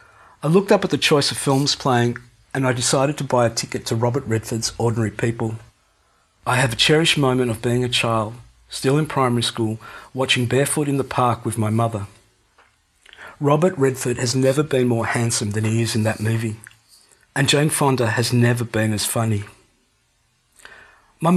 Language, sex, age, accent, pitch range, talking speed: English, male, 50-69, Australian, 110-135 Hz, 180 wpm